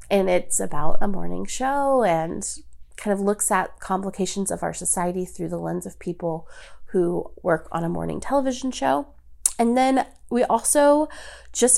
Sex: female